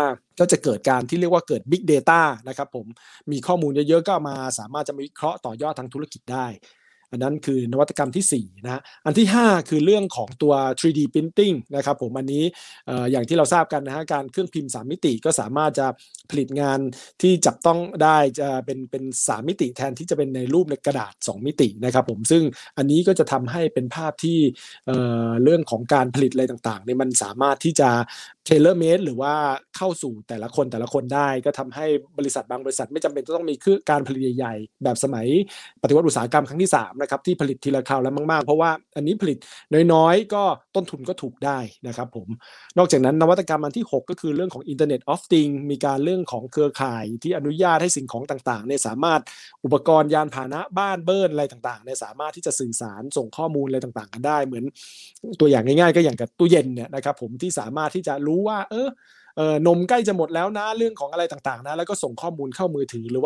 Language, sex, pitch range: Thai, male, 130-165 Hz